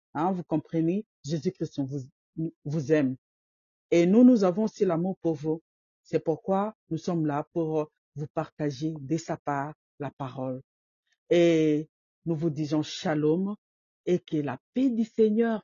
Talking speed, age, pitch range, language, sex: 150 wpm, 50-69, 145-175 Hz, French, female